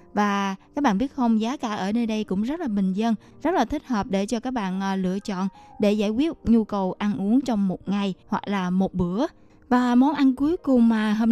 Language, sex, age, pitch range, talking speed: Vietnamese, female, 20-39, 205-260 Hz, 245 wpm